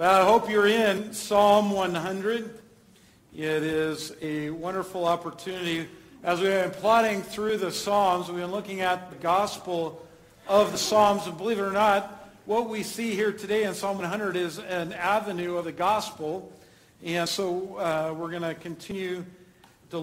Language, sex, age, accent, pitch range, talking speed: English, male, 50-69, American, 175-220 Hz, 160 wpm